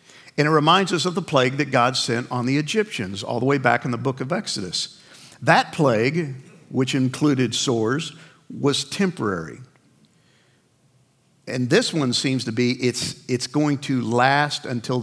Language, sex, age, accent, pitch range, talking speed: English, male, 50-69, American, 120-150 Hz, 165 wpm